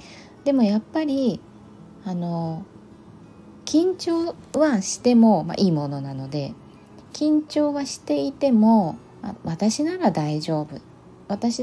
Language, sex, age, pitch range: Japanese, female, 20-39, 165-235 Hz